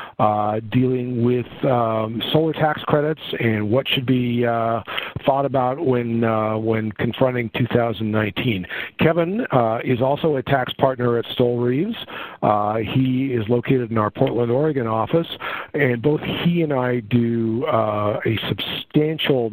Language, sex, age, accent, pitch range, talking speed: English, male, 50-69, American, 110-135 Hz, 145 wpm